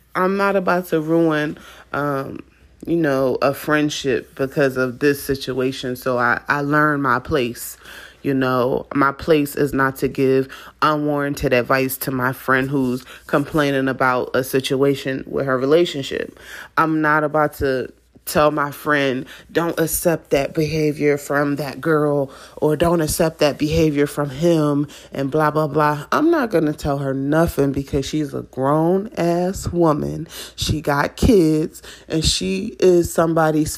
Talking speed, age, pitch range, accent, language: 155 wpm, 30-49, 140-160 Hz, American, English